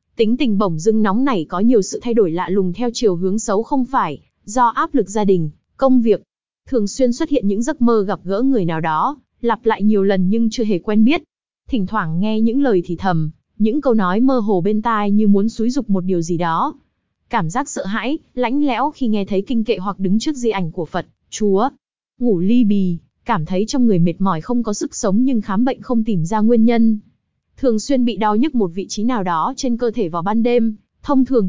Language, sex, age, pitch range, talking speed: Vietnamese, female, 20-39, 195-245 Hz, 240 wpm